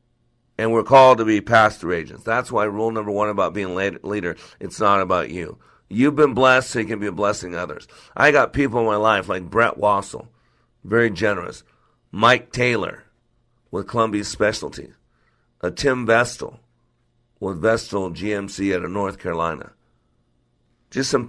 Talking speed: 165 wpm